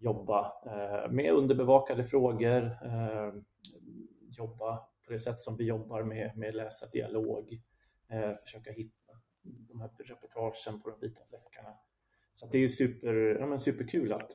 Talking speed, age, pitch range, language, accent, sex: 135 wpm, 30-49, 110-125 Hz, Swedish, native, male